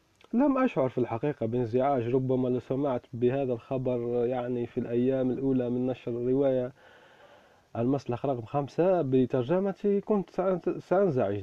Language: Arabic